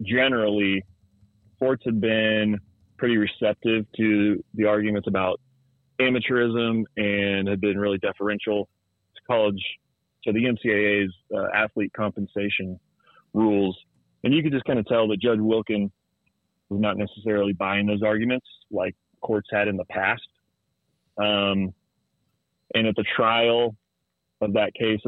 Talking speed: 130 wpm